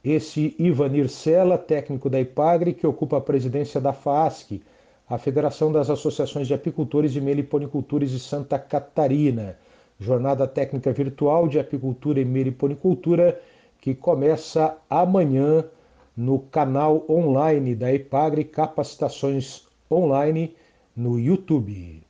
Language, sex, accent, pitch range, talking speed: Portuguese, male, Brazilian, 130-155 Hz, 115 wpm